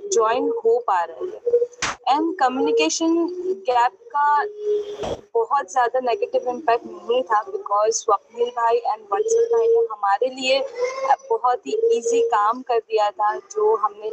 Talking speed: 140 wpm